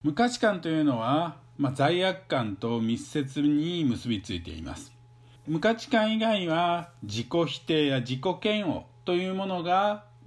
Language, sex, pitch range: Japanese, male, 115-170 Hz